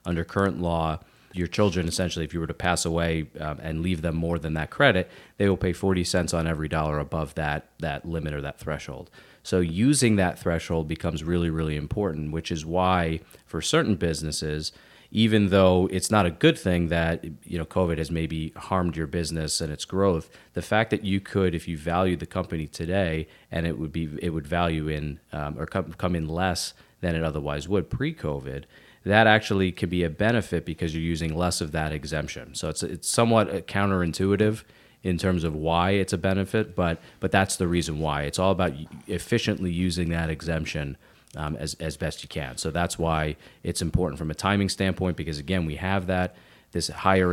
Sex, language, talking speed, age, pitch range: male, English, 200 wpm, 30-49, 80-95 Hz